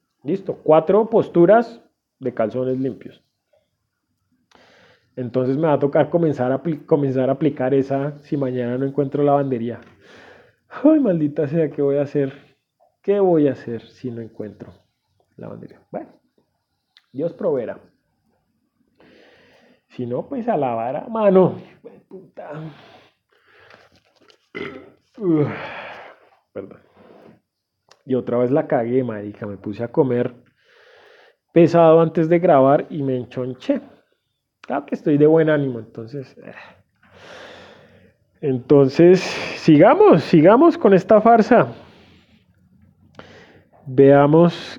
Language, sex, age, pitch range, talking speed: Spanish, male, 30-49, 130-185 Hz, 110 wpm